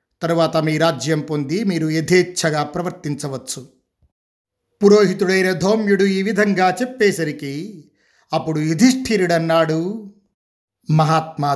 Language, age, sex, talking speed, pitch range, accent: Telugu, 50-69, male, 80 wpm, 155-195 Hz, native